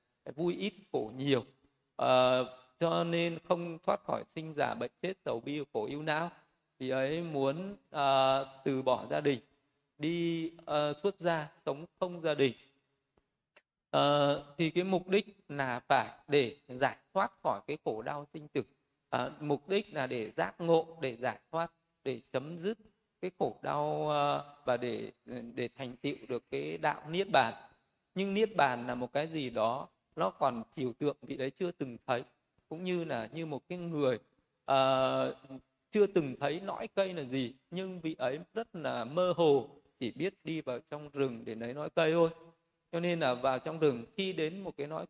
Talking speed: 185 wpm